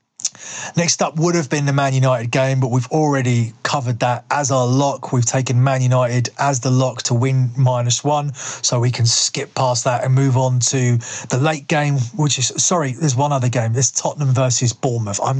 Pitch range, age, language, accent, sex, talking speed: 125-145 Hz, 30-49, English, British, male, 205 wpm